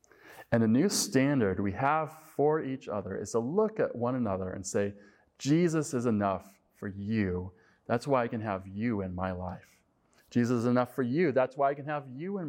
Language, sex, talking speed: English, male, 205 wpm